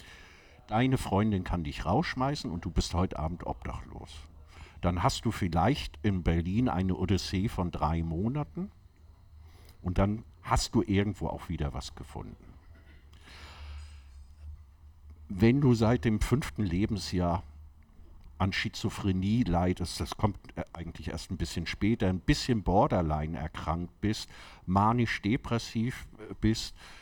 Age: 50-69